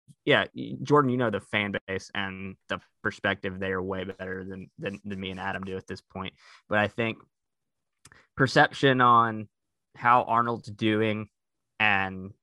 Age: 20-39